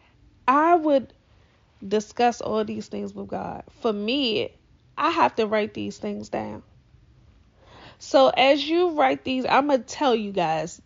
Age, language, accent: 20-39, English, American